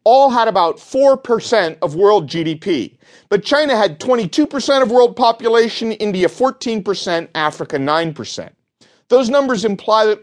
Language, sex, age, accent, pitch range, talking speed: English, male, 40-59, American, 185-260 Hz, 130 wpm